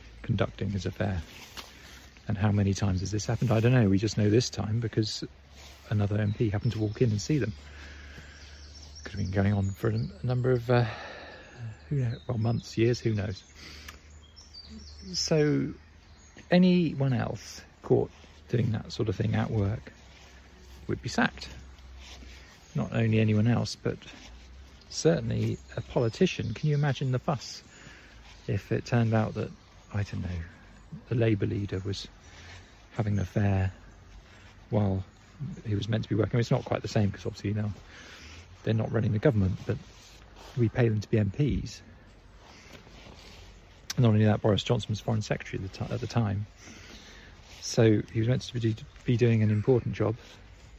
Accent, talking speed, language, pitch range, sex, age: British, 160 wpm, English, 90-115 Hz, male, 40-59